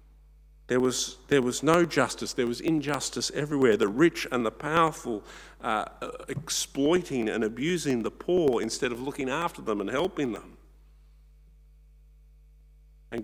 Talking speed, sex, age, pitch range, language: 130 wpm, male, 50-69, 75-120 Hz, English